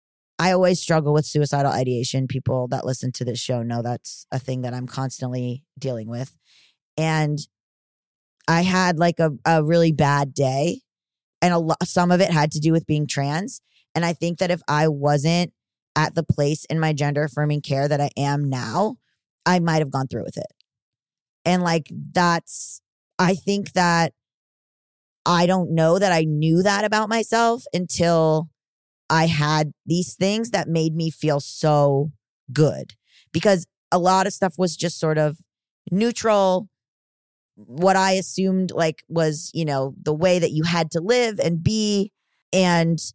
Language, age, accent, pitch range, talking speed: English, 20-39, American, 145-185 Hz, 165 wpm